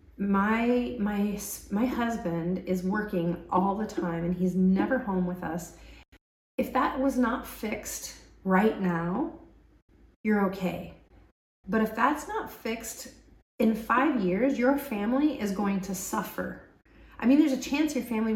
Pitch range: 185-260 Hz